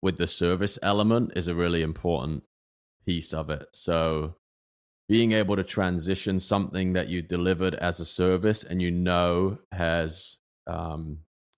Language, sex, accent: English, male, British